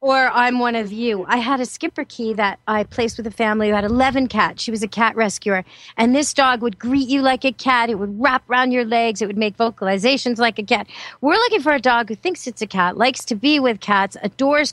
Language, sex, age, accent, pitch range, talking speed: English, female, 40-59, American, 200-260 Hz, 255 wpm